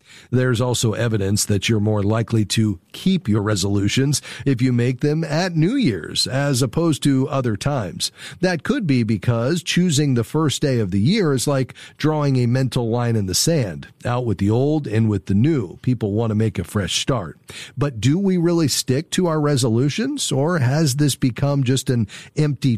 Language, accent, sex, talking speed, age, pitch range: English, American, male, 190 wpm, 40-59, 110-145 Hz